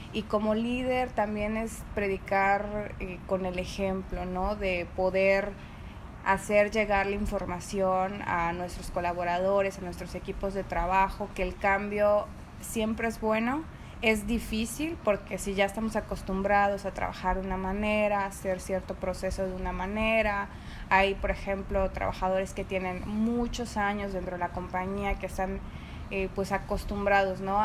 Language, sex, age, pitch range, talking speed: Spanish, female, 20-39, 190-210 Hz, 150 wpm